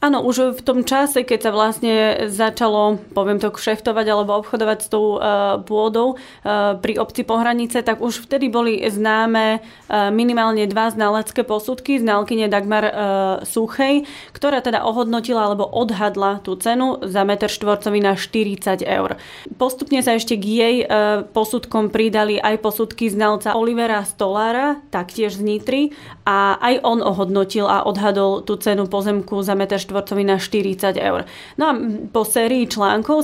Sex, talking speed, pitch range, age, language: female, 150 wpm, 205-230 Hz, 30-49, Slovak